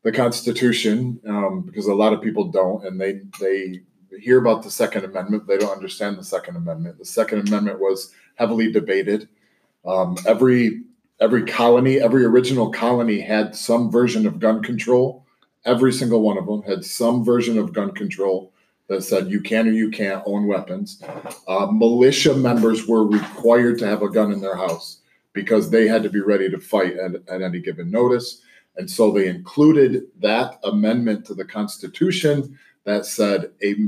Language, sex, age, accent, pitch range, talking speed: English, male, 40-59, American, 100-120 Hz, 175 wpm